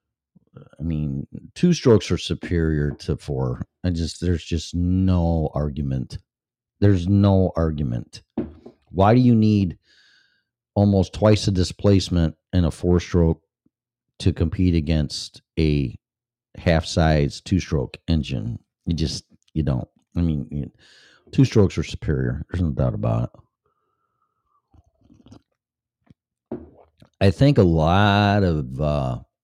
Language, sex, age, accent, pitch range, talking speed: English, male, 50-69, American, 80-105 Hz, 120 wpm